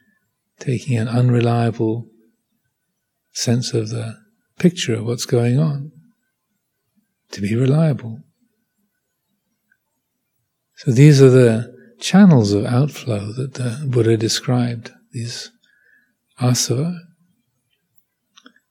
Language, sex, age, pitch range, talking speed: English, male, 40-59, 120-180 Hz, 85 wpm